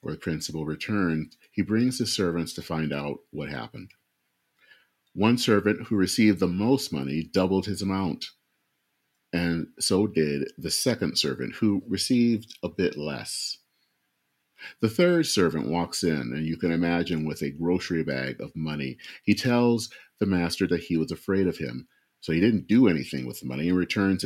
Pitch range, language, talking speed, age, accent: 80-105 Hz, English, 170 wpm, 40-59, American